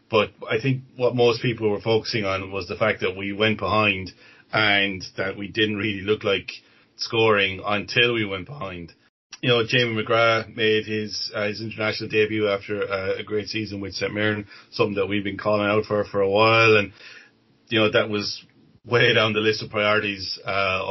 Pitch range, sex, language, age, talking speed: 100-115 Hz, male, English, 30-49, 195 wpm